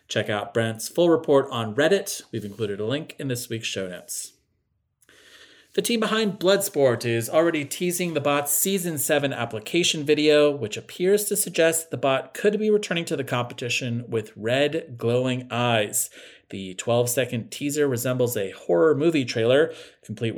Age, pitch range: 40-59, 115-170 Hz